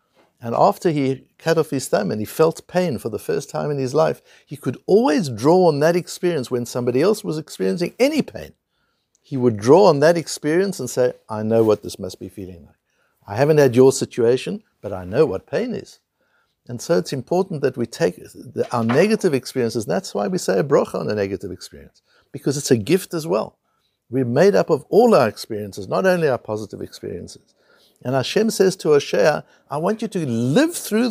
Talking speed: 210 wpm